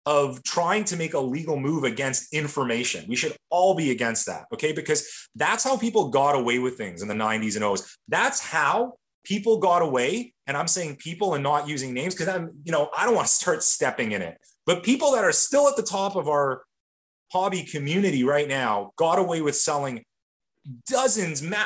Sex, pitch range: male, 140-210 Hz